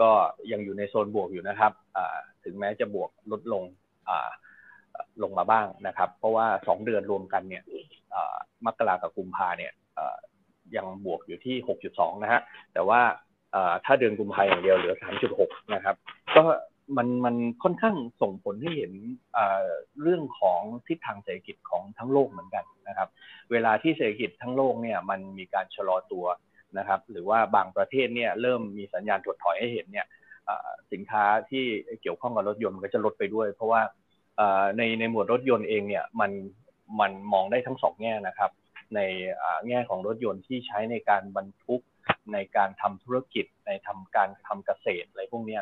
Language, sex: Thai, male